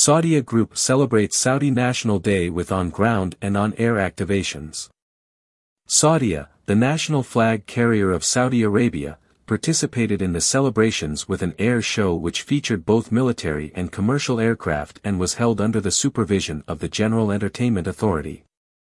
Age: 50-69